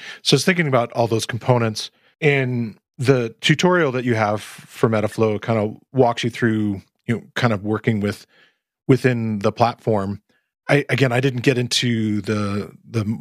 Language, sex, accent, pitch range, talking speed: English, male, American, 110-130 Hz, 175 wpm